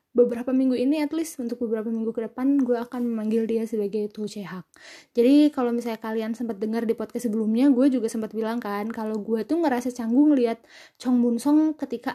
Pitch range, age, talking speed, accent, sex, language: 230-275 Hz, 20-39, 200 wpm, native, female, Indonesian